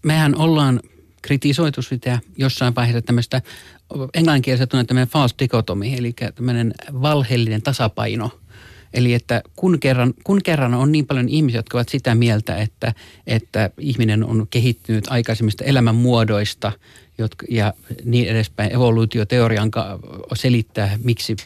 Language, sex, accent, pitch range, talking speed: Finnish, male, native, 110-130 Hz, 125 wpm